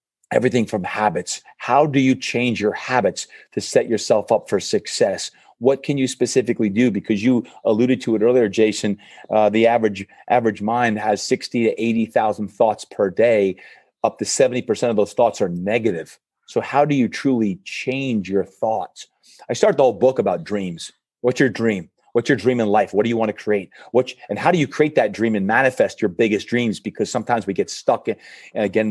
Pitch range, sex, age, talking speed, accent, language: 100-120 Hz, male, 30-49, 195 wpm, American, English